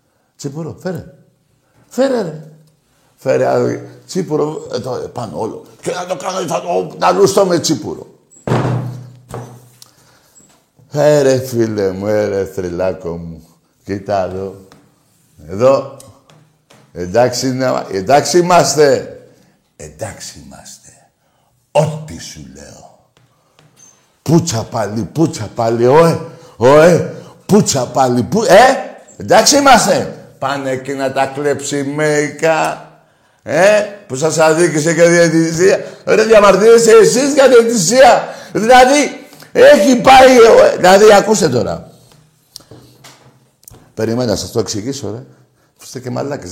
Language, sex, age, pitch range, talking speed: Greek, male, 60-79, 115-180 Hz, 105 wpm